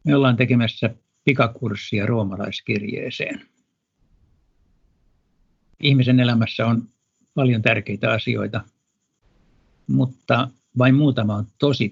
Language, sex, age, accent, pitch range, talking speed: Finnish, male, 60-79, native, 105-130 Hz, 80 wpm